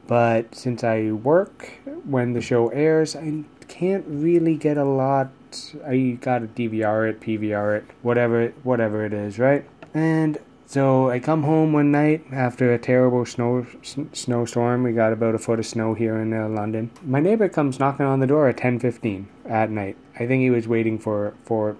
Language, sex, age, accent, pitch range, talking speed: English, male, 20-39, American, 110-135 Hz, 185 wpm